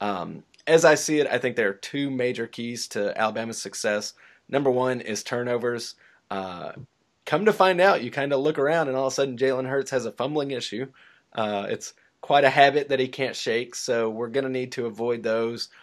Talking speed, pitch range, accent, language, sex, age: 215 wpm, 110-140 Hz, American, English, male, 30-49